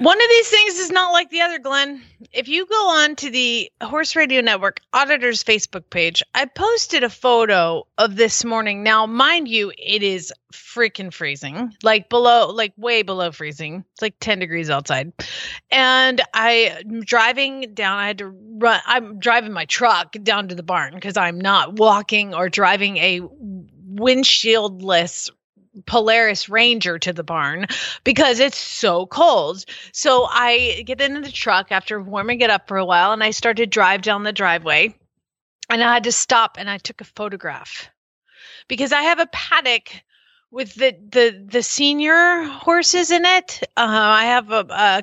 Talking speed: 170 wpm